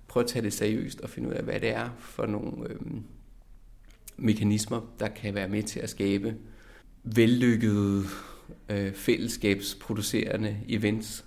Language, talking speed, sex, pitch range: Danish, 145 wpm, male, 105-120 Hz